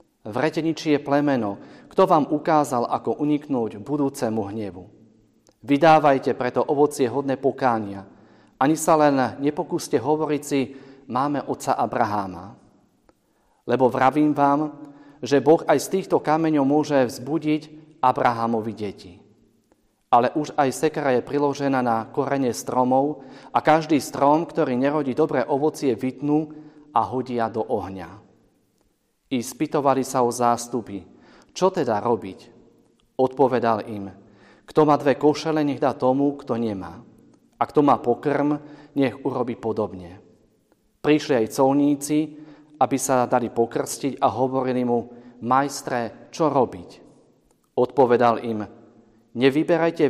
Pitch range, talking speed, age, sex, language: 115-145 Hz, 120 wpm, 40-59, male, Slovak